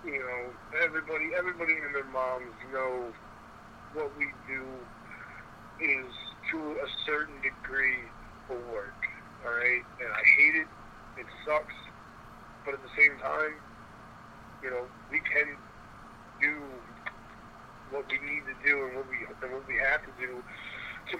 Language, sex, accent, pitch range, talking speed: English, male, American, 125-155 Hz, 140 wpm